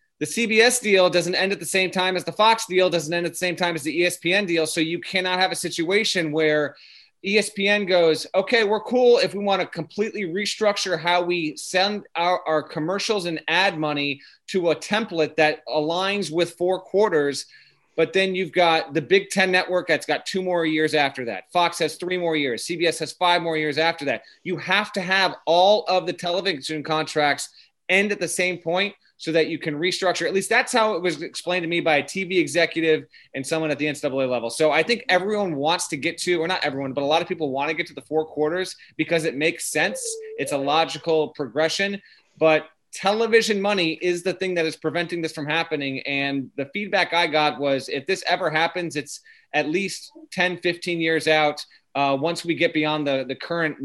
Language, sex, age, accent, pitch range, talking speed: English, male, 30-49, American, 155-185 Hz, 215 wpm